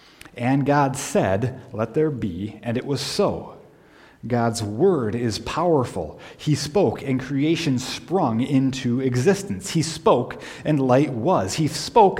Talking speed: 140 wpm